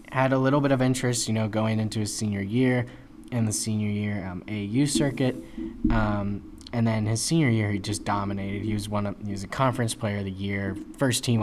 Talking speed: 225 wpm